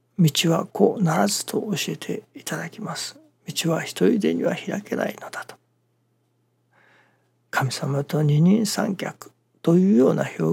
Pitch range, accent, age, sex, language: 145-200 Hz, native, 60-79, male, Japanese